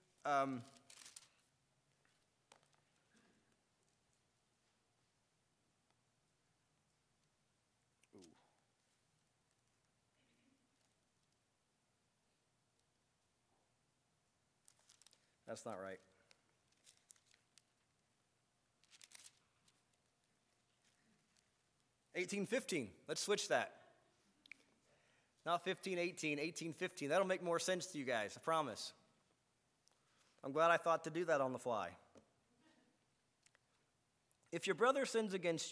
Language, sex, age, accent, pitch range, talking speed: English, male, 50-69, American, 140-195 Hz, 65 wpm